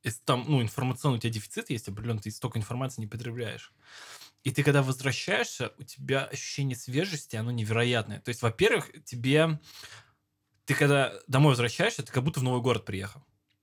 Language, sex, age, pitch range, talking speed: Russian, male, 20-39, 120-145 Hz, 170 wpm